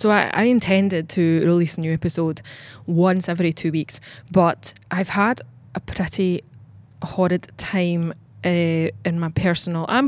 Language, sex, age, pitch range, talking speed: English, female, 20-39, 150-185 Hz, 150 wpm